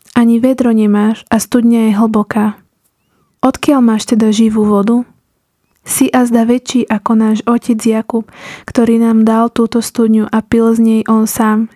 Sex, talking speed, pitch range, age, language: female, 160 wpm, 220-240 Hz, 20-39, Slovak